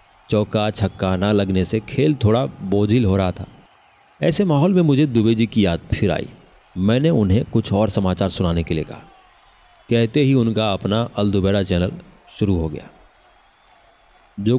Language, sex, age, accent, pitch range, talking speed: Hindi, male, 30-49, native, 95-115 Hz, 165 wpm